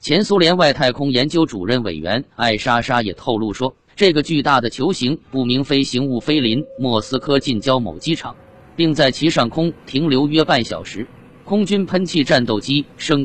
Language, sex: Chinese, male